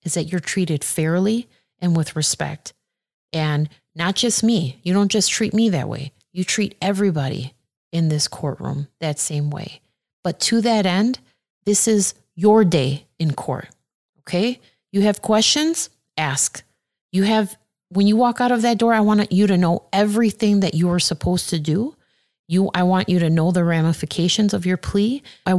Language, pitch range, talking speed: English, 155-210 Hz, 180 wpm